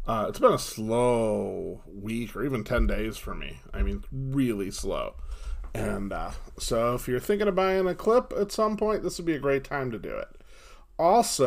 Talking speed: 205 wpm